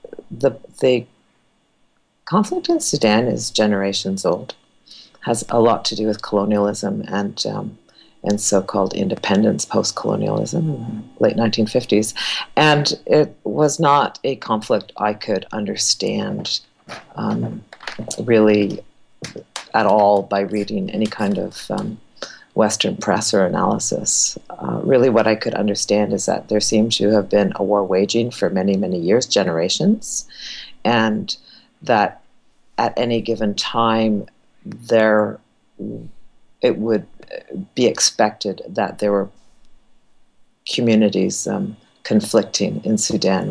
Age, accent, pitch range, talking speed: 40-59, American, 105-115 Hz, 120 wpm